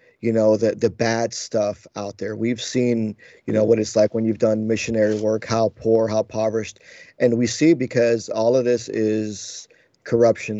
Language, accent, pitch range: English, American, 110-120 Hz